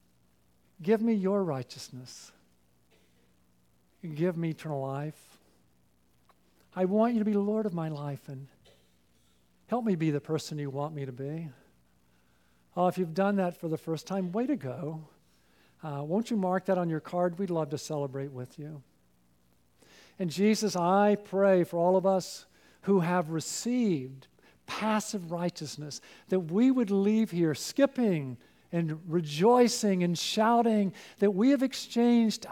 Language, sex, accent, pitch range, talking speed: English, male, American, 150-235 Hz, 150 wpm